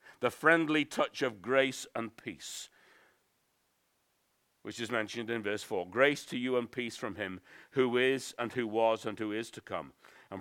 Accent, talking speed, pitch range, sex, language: British, 180 wpm, 125-190 Hz, male, English